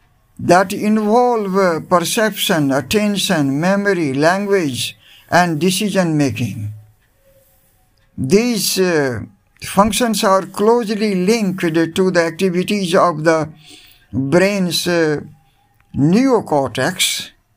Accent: Indian